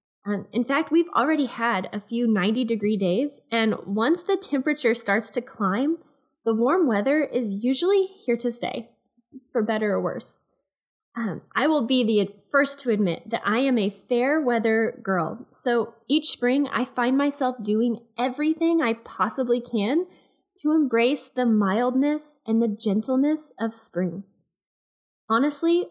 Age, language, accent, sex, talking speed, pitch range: 10-29, English, American, female, 150 wpm, 215-285 Hz